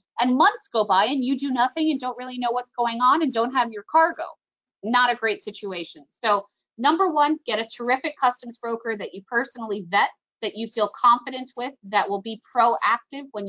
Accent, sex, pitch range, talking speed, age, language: American, female, 210-275 Hz, 205 wpm, 30-49, English